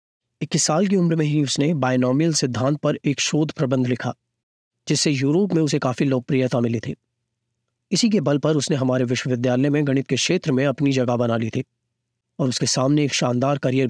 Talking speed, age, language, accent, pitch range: 195 wpm, 30-49, Hindi, native, 120-150 Hz